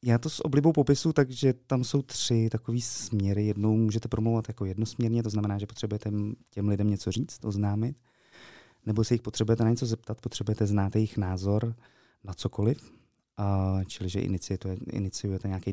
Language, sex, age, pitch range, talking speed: Czech, male, 20-39, 95-115 Hz, 160 wpm